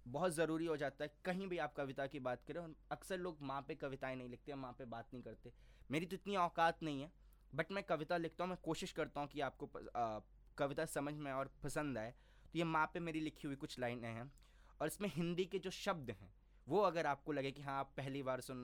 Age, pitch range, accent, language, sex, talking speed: 20-39, 125-170 Hz, native, Hindi, male, 245 wpm